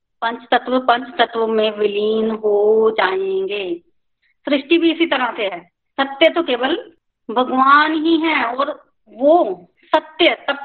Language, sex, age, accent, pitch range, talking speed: Hindi, female, 50-69, native, 235-325 Hz, 135 wpm